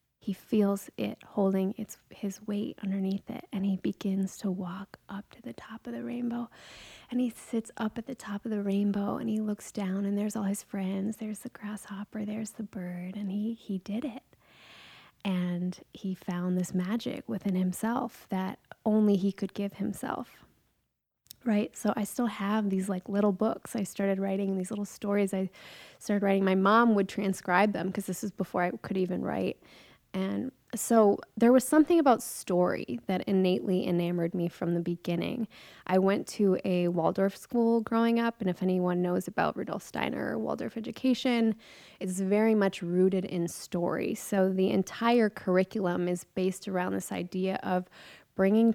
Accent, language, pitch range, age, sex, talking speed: American, English, 185-220 Hz, 20-39, female, 175 wpm